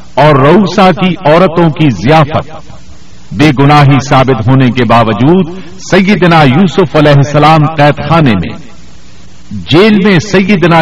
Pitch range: 125-170 Hz